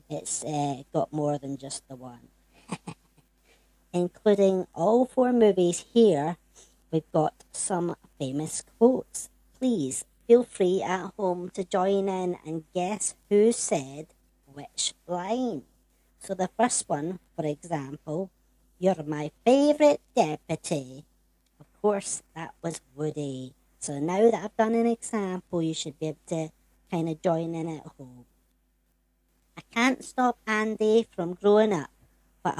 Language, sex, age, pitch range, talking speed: English, male, 60-79, 145-220 Hz, 135 wpm